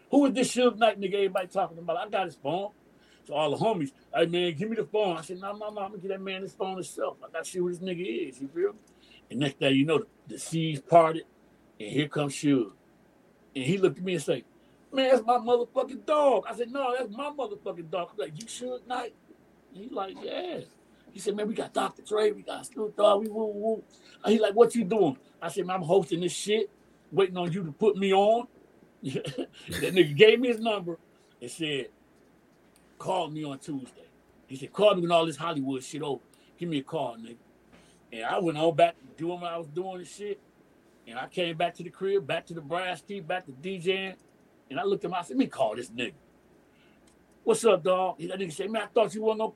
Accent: American